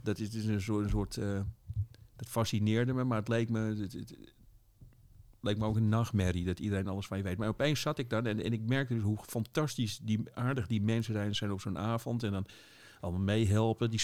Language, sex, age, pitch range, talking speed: Dutch, male, 50-69, 100-115 Hz, 230 wpm